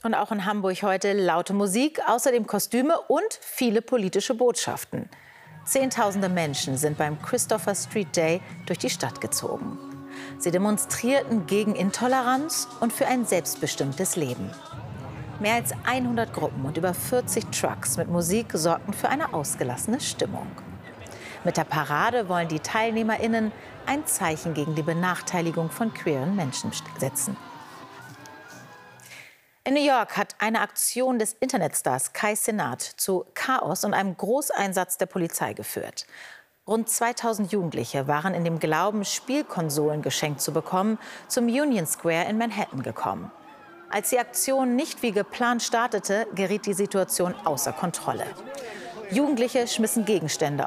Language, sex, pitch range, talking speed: German, female, 165-230 Hz, 135 wpm